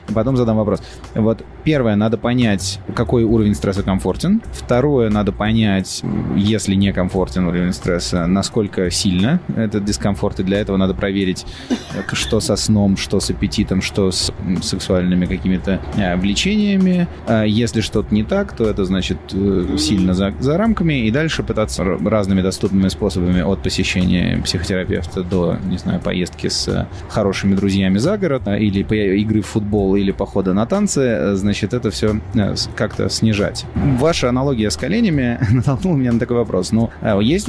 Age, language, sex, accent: 20-39, Russian, male, native